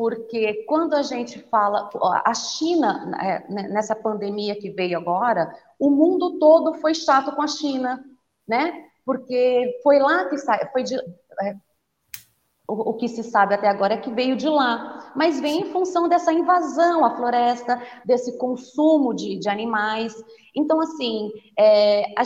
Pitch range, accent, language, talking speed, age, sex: 200-280 Hz, Brazilian, Portuguese, 145 wpm, 30-49, female